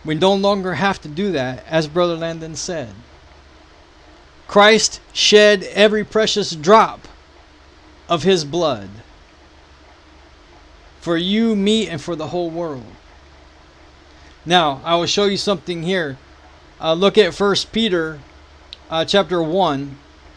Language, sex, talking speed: English, male, 125 wpm